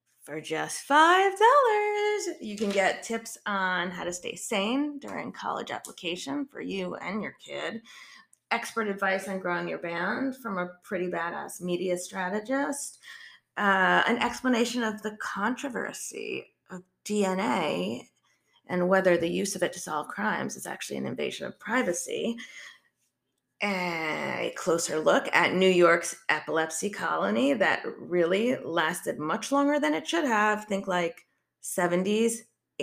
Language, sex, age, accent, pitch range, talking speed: English, female, 30-49, American, 180-250 Hz, 135 wpm